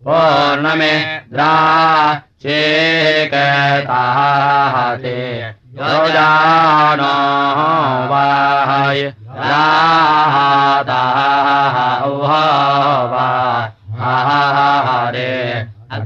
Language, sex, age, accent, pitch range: Russian, male, 30-49, Indian, 125-145 Hz